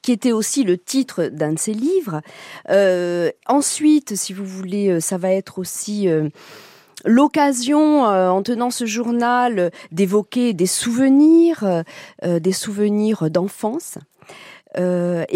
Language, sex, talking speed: French, female, 125 wpm